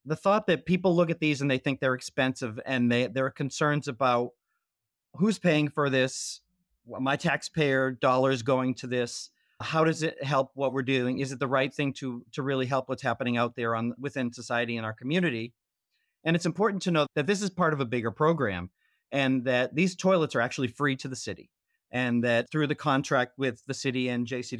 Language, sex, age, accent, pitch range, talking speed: English, male, 30-49, American, 125-155 Hz, 210 wpm